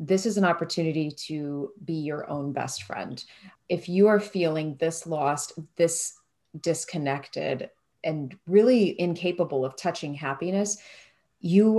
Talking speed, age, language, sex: 125 wpm, 30-49, English, female